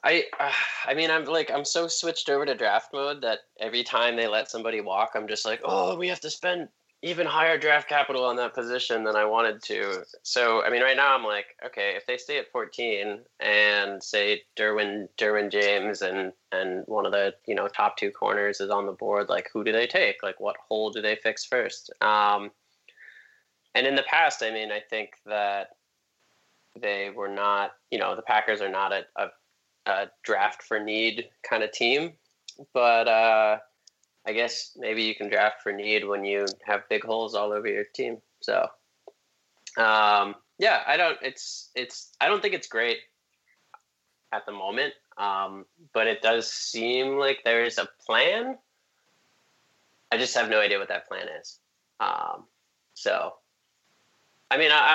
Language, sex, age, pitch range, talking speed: English, male, 20-39, 105-160 Hz, 185 wpm